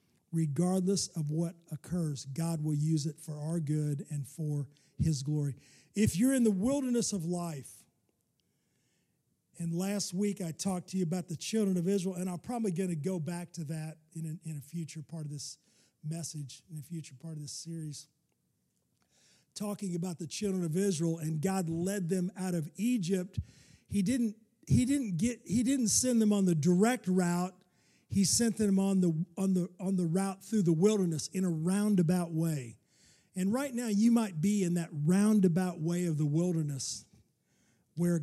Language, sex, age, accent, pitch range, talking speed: English, male, 50-69, American, 160-200 Hz, 180 wpm